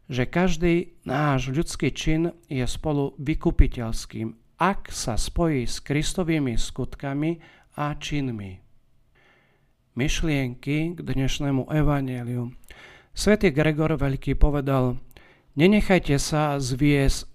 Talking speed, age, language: 95 wpm, 50-69, Slovak